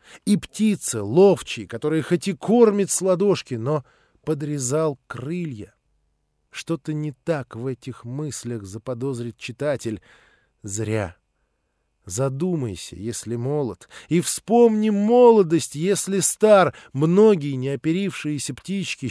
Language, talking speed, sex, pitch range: Russian, 100 wpm, male, 110-170 Hz